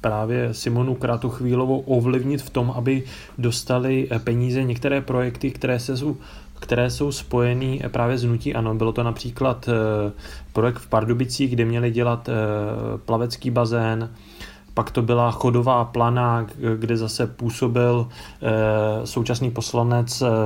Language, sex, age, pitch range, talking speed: Czech, male, 30-49, 115-130 Hz, 125 wpm